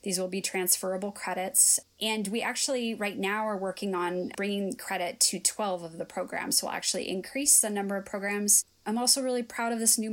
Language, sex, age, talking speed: English, female, 20-39, 205 wpm